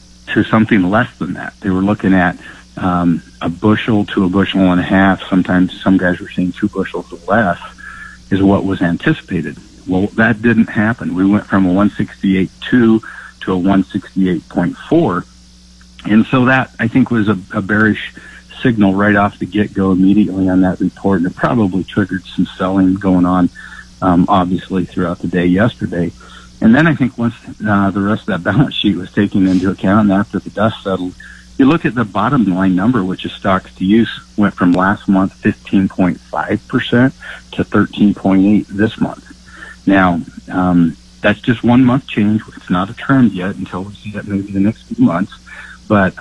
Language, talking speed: English, 185 wpm